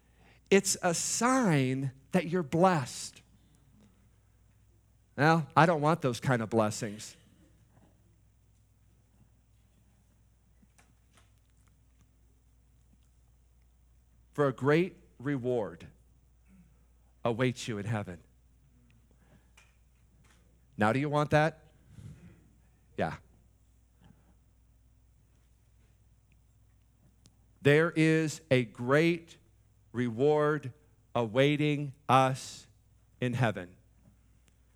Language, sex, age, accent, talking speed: English, male, 50-69, American, 65 wpm